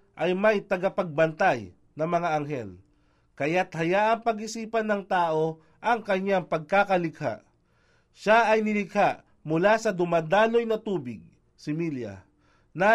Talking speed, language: 120 wpm, English